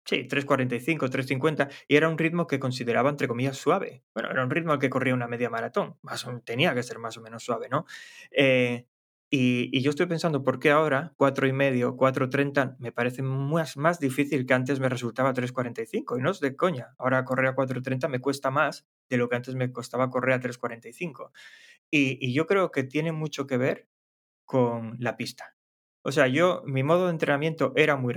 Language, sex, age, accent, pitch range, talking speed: Spanish, male, 20-39, Spanish, 125-145 Hz, 200 wpm